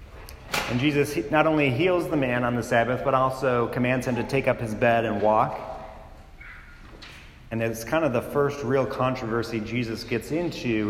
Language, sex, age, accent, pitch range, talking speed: English, male, 40-59, American, 110-150 Hz, 175 wpm